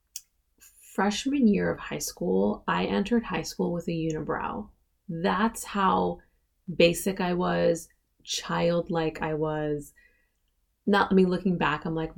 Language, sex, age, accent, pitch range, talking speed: English, female, 20-39, American, 160-205 Hz, 135 wpm